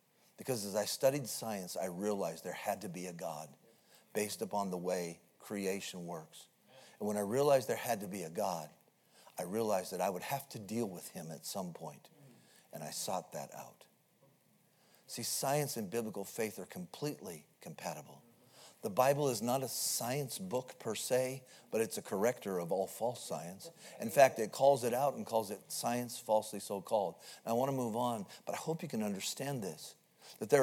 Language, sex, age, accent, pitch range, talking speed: English, male, 50-69, American, 105-140 Hz, 190 wpm